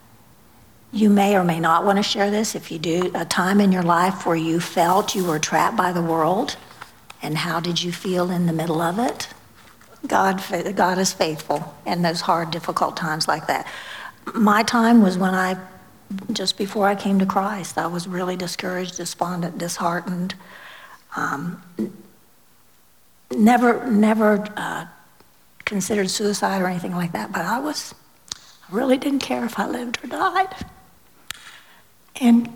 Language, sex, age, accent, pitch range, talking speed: English, female, 60-79, American, 170-215 Hz, 160 wpm